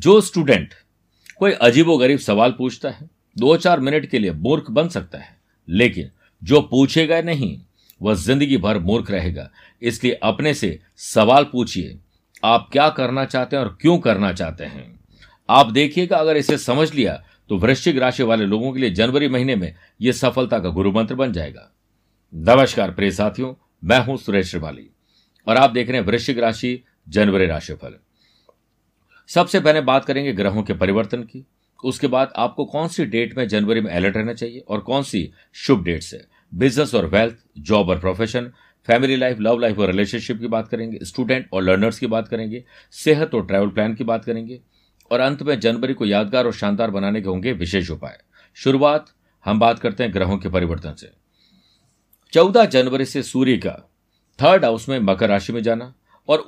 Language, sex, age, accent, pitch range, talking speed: Hindi, male, 50-69, native, 100-135 Hz, 180 wpm